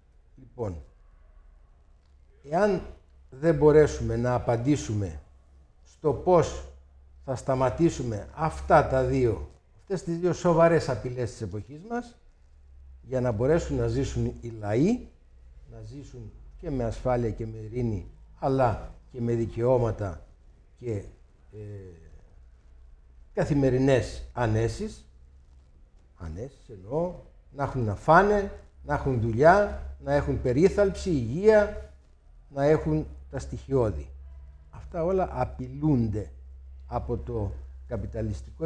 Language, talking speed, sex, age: Greek, 105 wpm, male, 60-79